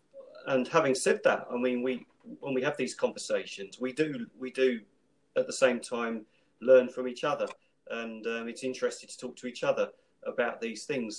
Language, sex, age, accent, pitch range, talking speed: English, male, 40-59, British, 105-140 Hz, 195 wpm